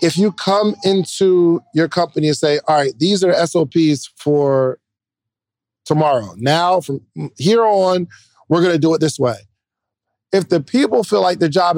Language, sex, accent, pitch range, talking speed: English, male, American, 135-180 Hz, 170 wpm